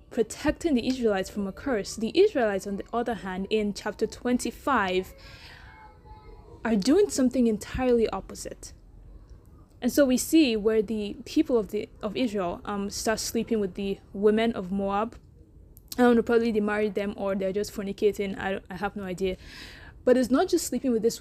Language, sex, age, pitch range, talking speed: English, female, 20-39, 205-245 Hz, 175 wpm